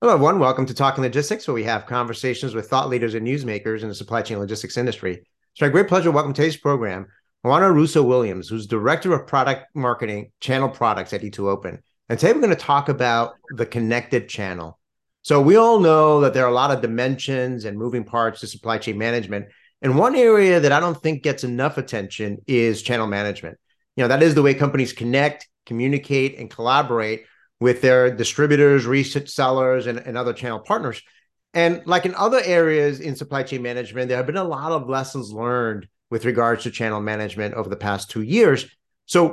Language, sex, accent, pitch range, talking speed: English, male, American, 115-150 Hz, 200 wpm